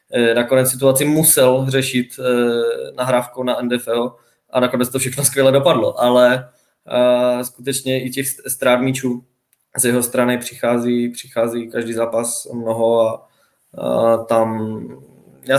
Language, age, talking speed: Czech, 20-39, 110 wpm